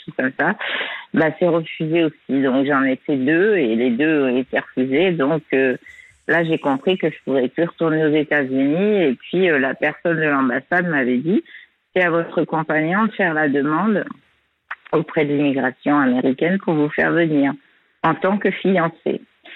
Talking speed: 175 wpm